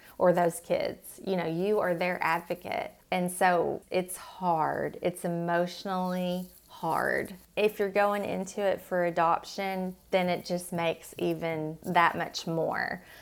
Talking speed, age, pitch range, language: 140 wpm, 30-49, 170-205 Hz, English